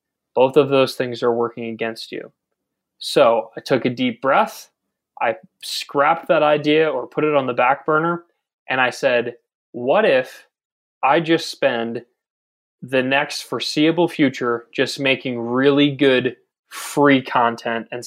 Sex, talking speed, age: male, 145 wpm, 20-39